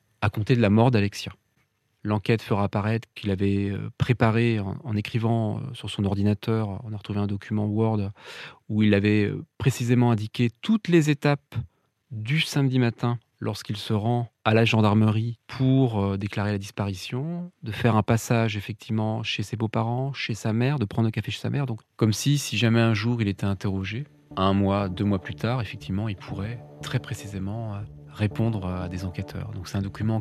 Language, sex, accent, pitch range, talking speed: French, male, French, 100-120 Hz, 185 wpm